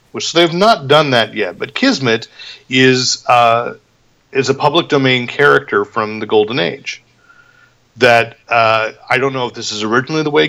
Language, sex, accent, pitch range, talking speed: English, male, American, 110-145 Hz, 175 wpm